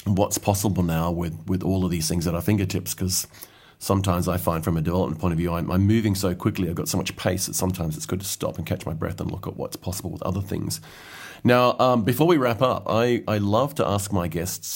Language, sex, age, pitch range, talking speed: English, male, 30-49, 90-105 Hz, 255 wpm